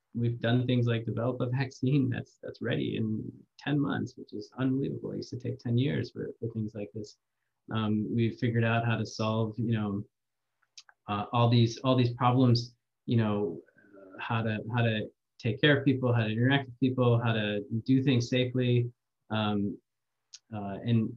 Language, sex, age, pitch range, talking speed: English, male, 20-39, 105-125 Hz, 185 wpm